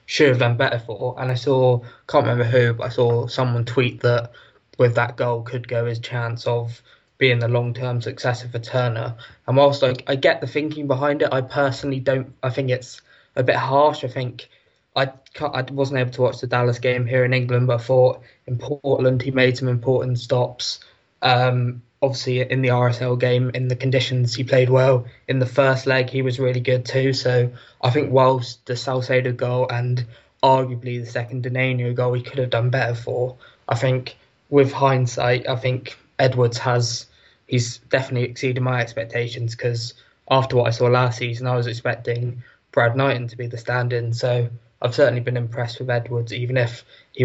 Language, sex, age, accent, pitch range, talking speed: English, male, 20-39, British, 120-130 Hz, 195 wpm